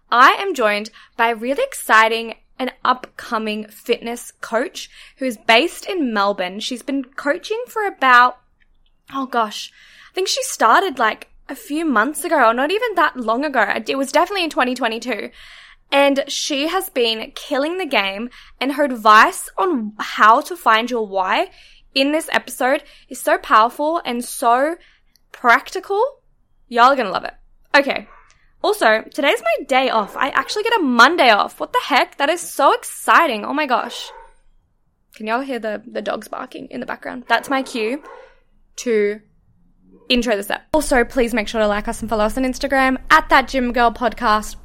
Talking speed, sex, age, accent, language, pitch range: 170 wpm, female, 10-29, Australian, English, 230-305 Hz